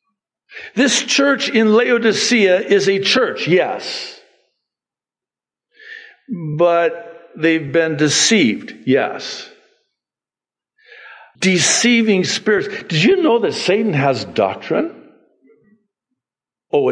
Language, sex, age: English, male, 60-79